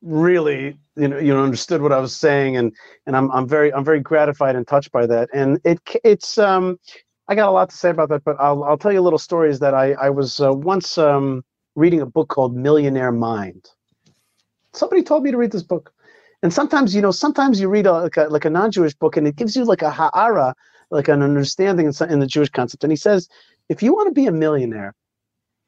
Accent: American